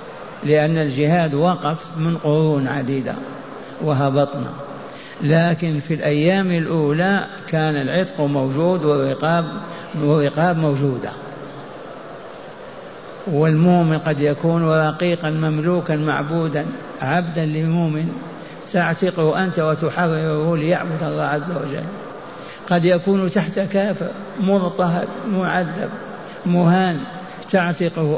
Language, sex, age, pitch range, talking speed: Arabic, male, 60-79, 155-180 Hz, 85 wpm